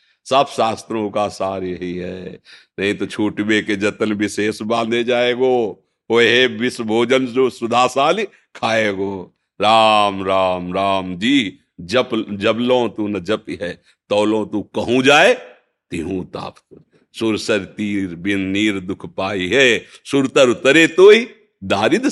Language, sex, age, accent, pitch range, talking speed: Hindi, male, 50-69, native, 105-145 Hz, 140 wpm